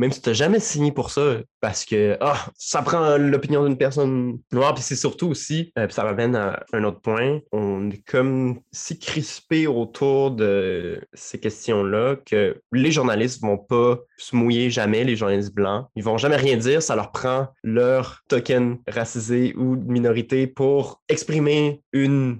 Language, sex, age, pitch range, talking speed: French, male, 20-39, 105-135 Hz, 175 wpm